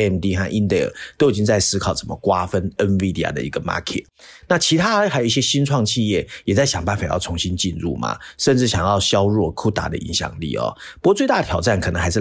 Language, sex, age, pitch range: Chinese, male, 30-49, 90-120 Hz